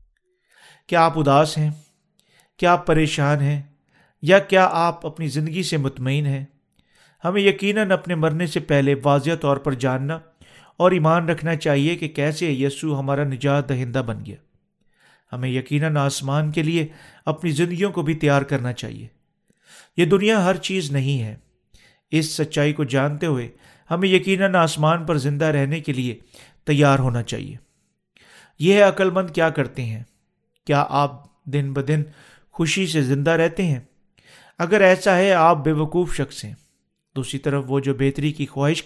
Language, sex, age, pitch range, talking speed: Urdu, male, 40-59, 140-170 Hz, 160 wpm